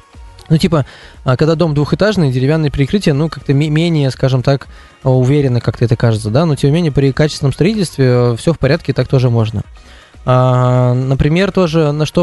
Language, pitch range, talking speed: Russian, 125-150 Hz, 165 wpm